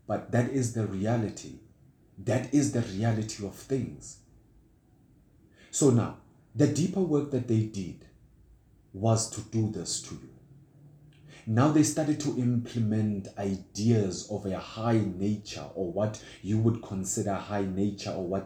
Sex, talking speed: male, 145 wpm